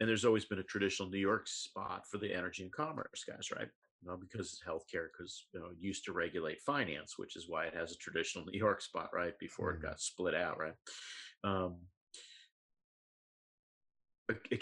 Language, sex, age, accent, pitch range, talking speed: English, male, 50-69, American, 90-105 Hz, 195 wpm